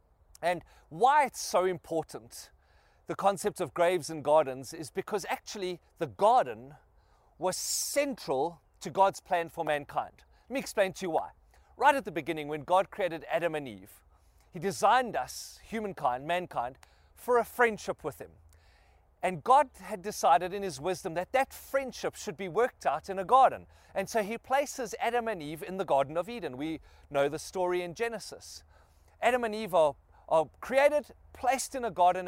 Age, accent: 30-49, South African